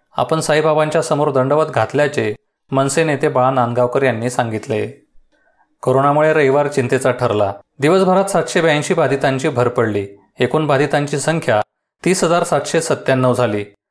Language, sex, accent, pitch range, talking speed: Marathi, male, native, 125-165 Hz, 110 wpm